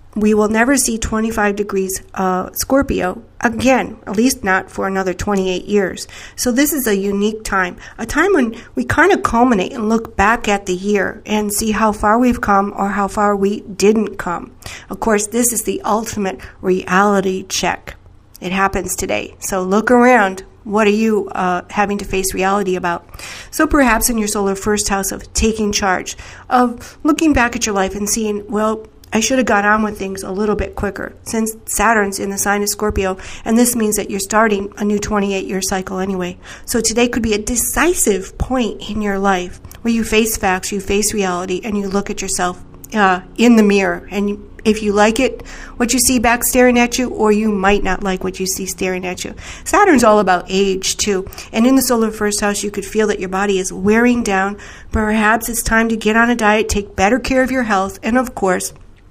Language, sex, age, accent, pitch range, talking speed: English, female, 50-69, American, 195-225 Hz, 205 wpm